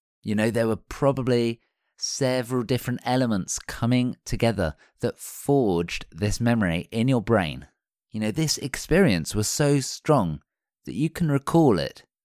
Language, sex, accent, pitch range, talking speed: English, male, British, 100-140 Hz, 140 wpm